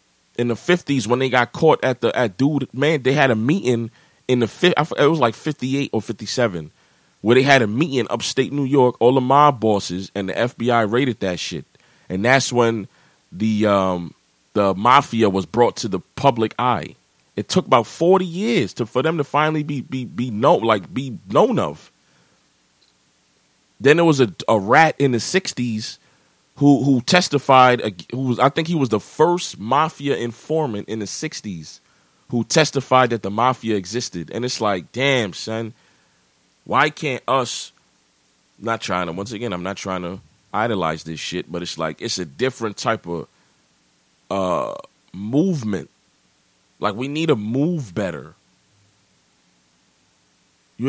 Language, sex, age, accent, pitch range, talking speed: English, male, 30-49, American, 90-135 Hz, 170 wpm